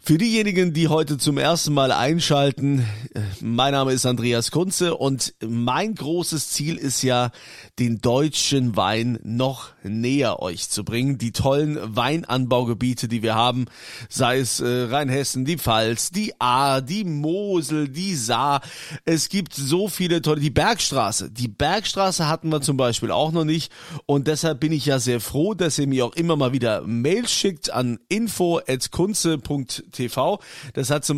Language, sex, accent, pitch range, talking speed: German, male, German, 120-160 Hz, 160 wpm